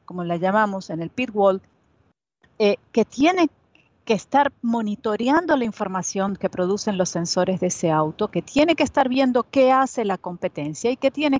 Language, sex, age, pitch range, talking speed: Spanish, female, 40-59, 175-230 Hz, 175 wpm